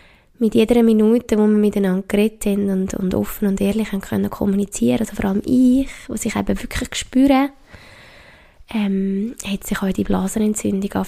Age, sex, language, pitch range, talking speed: 20-39, female, German, 195-230 Hz, 155 wpm